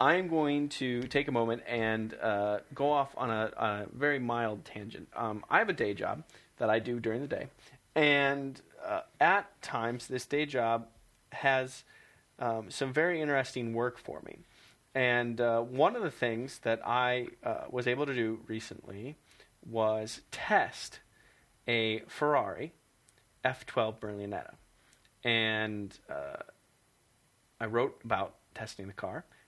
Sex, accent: male, American